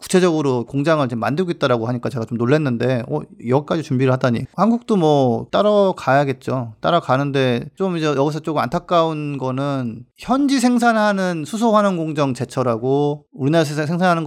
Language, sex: Korean, male